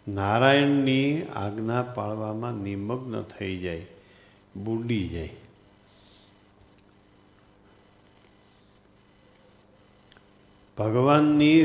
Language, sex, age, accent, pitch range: Gujarati, male, 50-69, native, 100-125 Hz